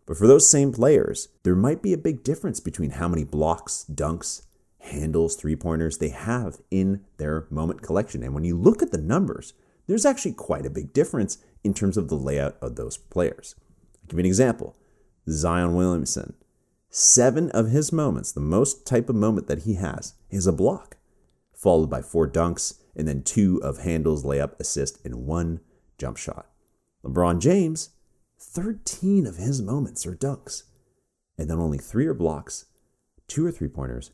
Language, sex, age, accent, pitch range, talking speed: English, male, 30-49, American, 80-120 Hz, 175 wpm